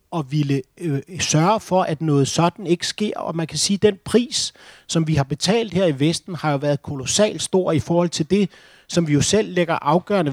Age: 30-49